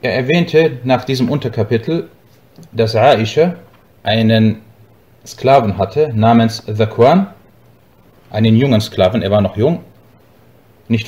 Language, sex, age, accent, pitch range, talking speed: German, male, 30-49, German, 110-150 Hz, 110 wpm